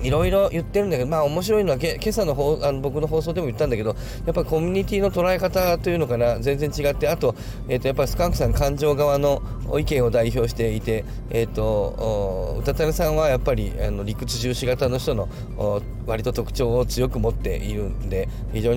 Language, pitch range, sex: Japanese, 110-155 Hz, male